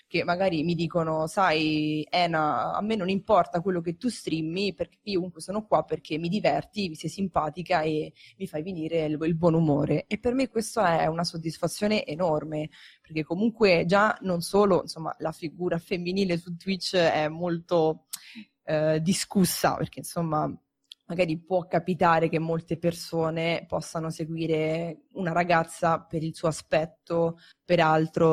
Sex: female